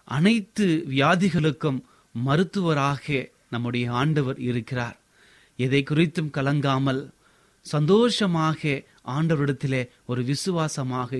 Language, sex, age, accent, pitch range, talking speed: Tamil, male, 30-49, native, 130-165 Hz, 70 wpm